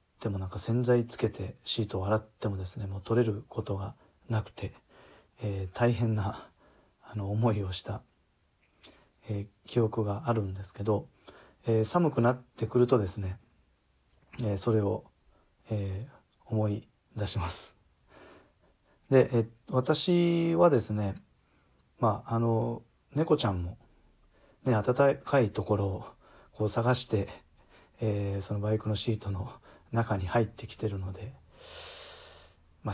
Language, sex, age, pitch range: Japanese, male, 40-59, 100-125 Hz